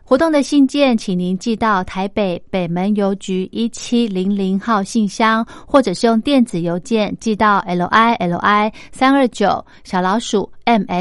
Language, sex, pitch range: Chinese, female, 195-240 Hz